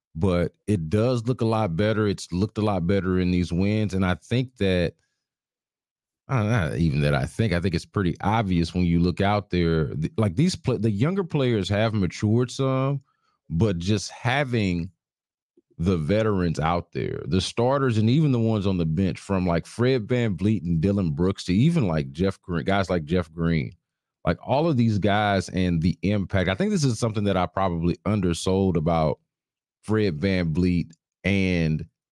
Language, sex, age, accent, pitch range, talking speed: English, male, 40-59, American, 85-110 Hz, 185 wpm